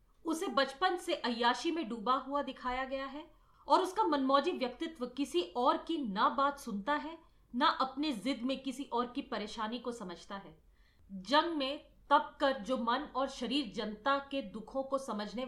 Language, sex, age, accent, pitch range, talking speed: Hindi, female, 40-59, native, 230-285 Hz, 185 wpm